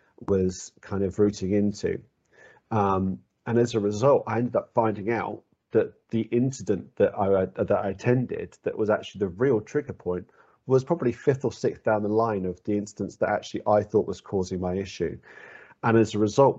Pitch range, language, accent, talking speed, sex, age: 95-115 Hz, English, British, 190 wpm, male, 40-59